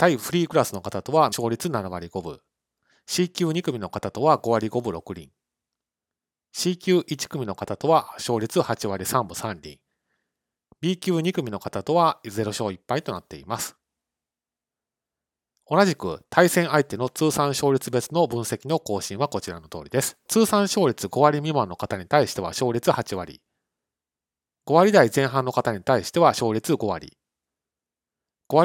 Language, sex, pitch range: Japanese, male, 100-150 Hz